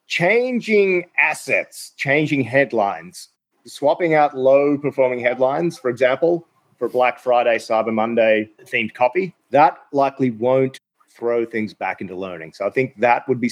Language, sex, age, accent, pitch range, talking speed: English, male, 30-49, Australian, 115-135 Hz, 135 wpm